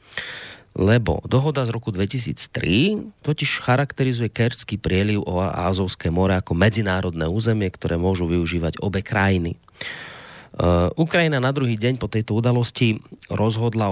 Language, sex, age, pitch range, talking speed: Slovak, male, 30-49, 90-115 Hz, 120 wpm